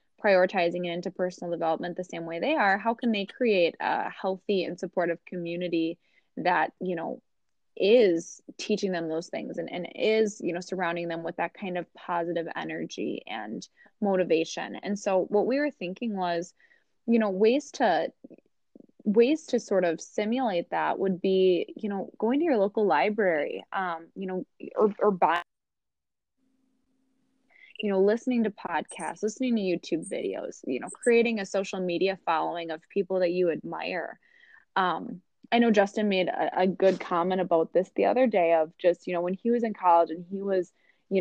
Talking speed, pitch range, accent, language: 180 wpm, 175-220 Hz, American, English